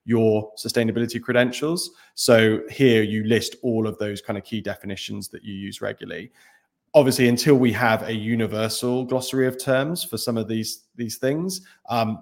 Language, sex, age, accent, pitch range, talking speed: English, male, 20-39, British, 105-125 Hz, 165 wpm